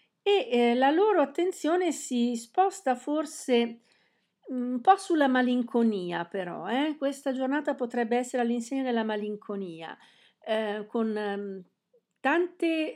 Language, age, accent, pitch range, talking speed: Italian, 50-69, native, 195-250 Hz, 110 wpm